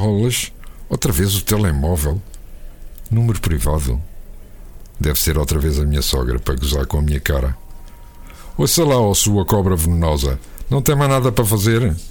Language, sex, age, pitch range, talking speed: Portuguese, male, 50-69, 75-105 Hz, 160 wpm